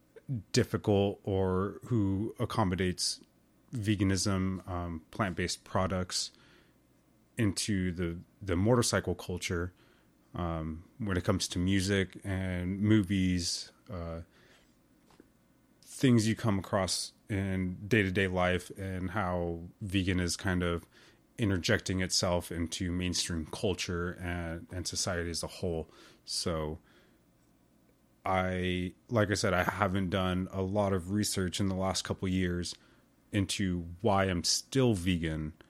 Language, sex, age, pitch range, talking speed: English, male, 30-49, 85-100 Hz, 115 wpm